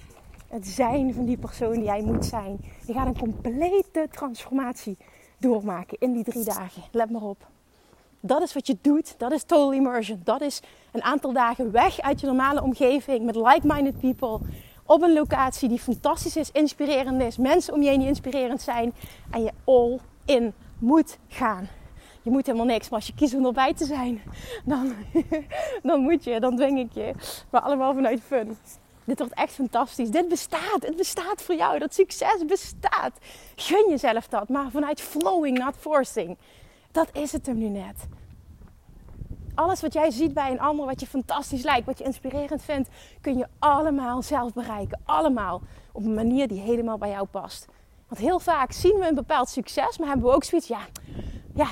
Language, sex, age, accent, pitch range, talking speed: Dutch, female, 30-49, Dutch, 235-300 Hz, 185 wpm